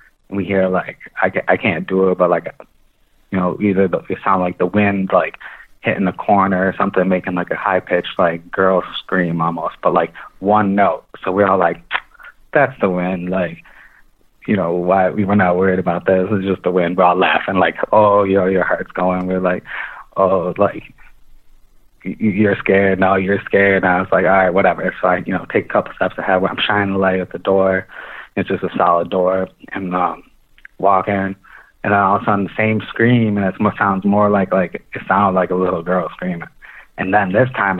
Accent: American